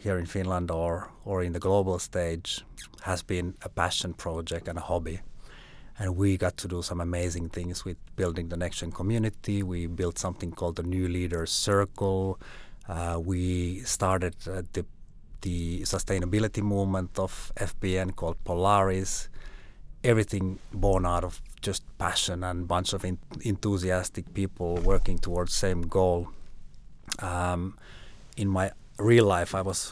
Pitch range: 85-100 Hz